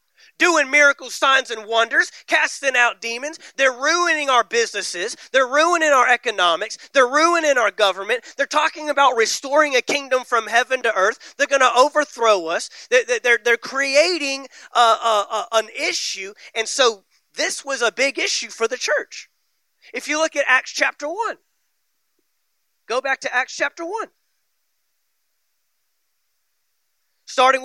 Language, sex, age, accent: English, male, 30-49, American